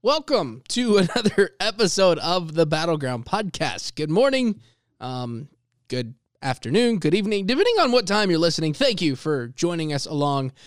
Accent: American